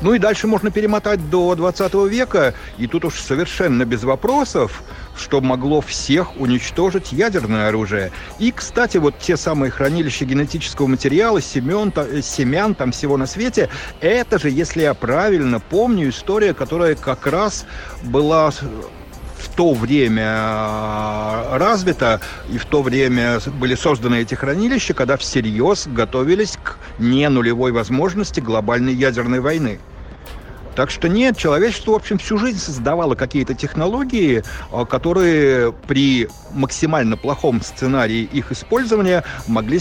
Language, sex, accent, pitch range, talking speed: Russian, male, native, 125-180 Hz, 130 wpm